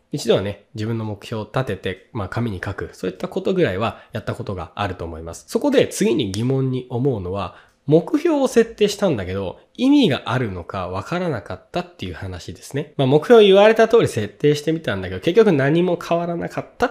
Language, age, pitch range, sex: Japanese, 20-39, 100-170 Hz, male